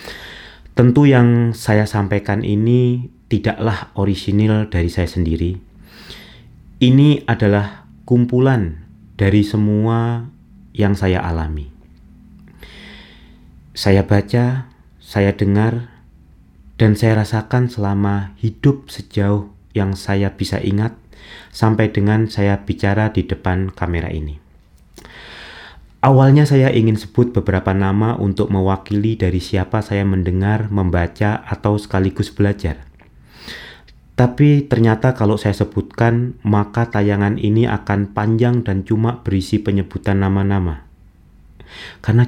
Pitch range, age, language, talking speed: 95-115 Hz, 30-49, Indonesian, 100 wpm